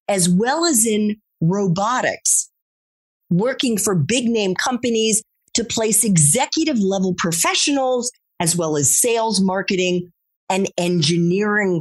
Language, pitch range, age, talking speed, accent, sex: English, 160-245 Hz, 40-59, 110 wpm, American, female